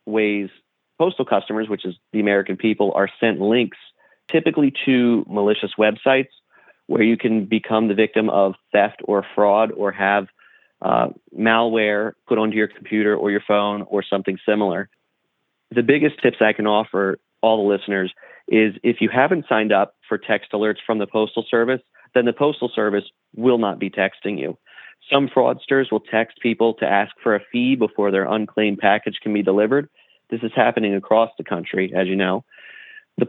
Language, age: English, 30-49